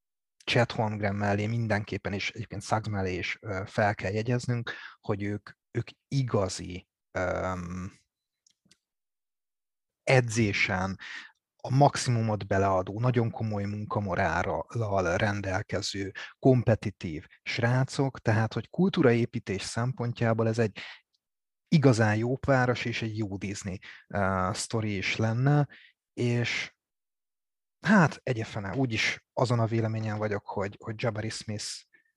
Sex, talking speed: male, 105 wpm